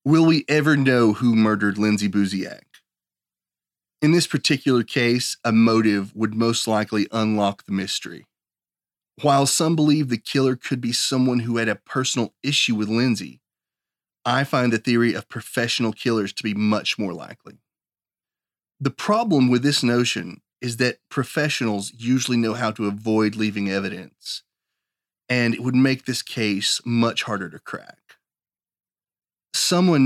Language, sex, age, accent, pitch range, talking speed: English, male, 30-49, American, 110-135 Hz, 145 wpm